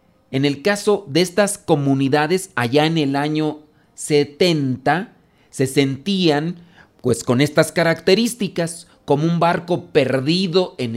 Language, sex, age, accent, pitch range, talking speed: Spanish, male, 40-59, Mexican, 130-170 Hz, 120 wpm